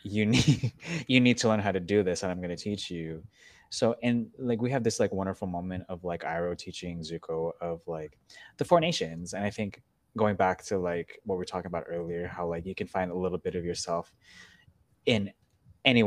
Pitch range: 85-105 Hz